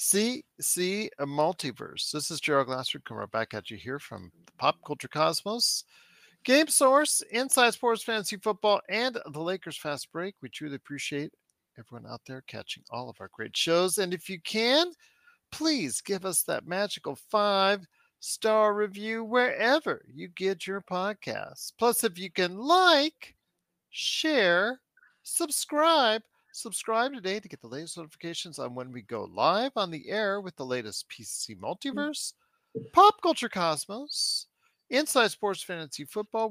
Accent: American